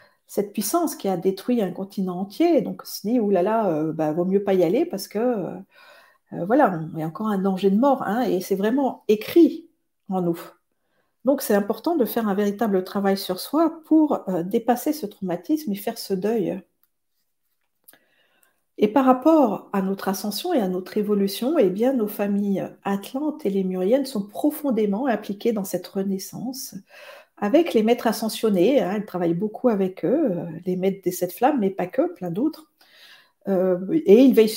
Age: 50-69